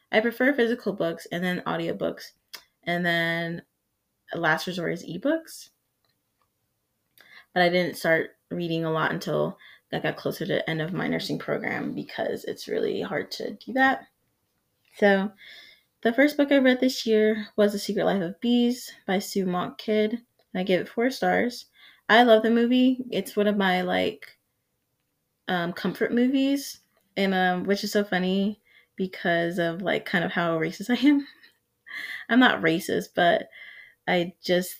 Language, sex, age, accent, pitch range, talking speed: English, female, 20-39, American, 175-240 Hz, 160 wpm